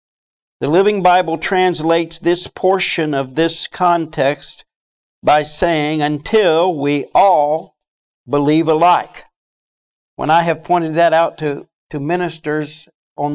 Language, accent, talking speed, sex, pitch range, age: English, American, 115 wpm, male, 145-185 Hz, 60-79